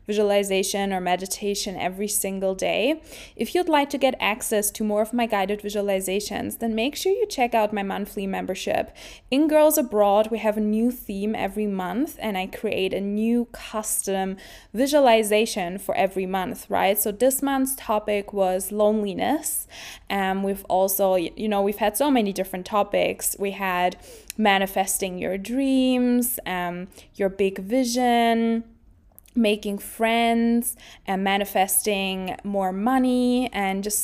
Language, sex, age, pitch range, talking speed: English, female, 20-39, 195-230 Hz, 145 wpm